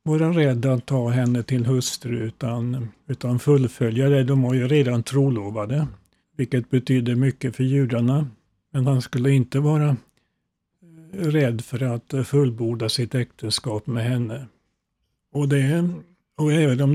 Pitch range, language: 125-145 Hz, Swedish